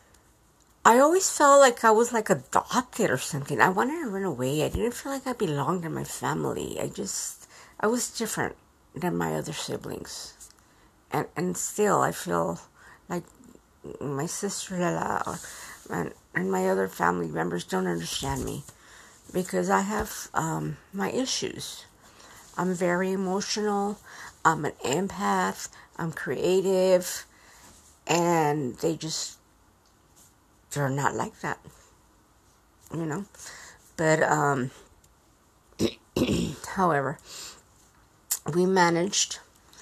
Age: 50-69